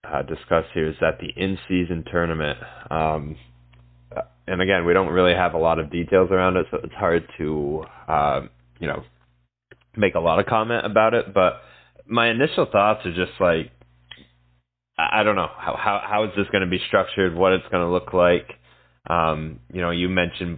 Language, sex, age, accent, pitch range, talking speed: English, male, 20-39, American, 75-100 Hz, 190 wpm